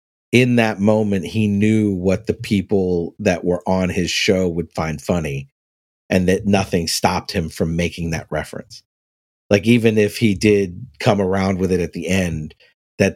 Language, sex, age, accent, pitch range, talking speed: English, male, 50-69, American, 85-105 Hz, 175 wpm